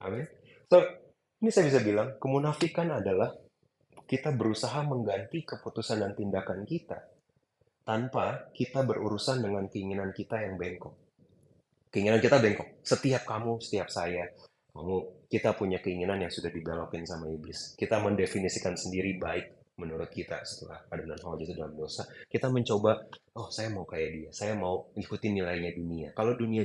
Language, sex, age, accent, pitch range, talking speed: Indonesian, male, 30-49, native, 95-130 Hz, 145 wpm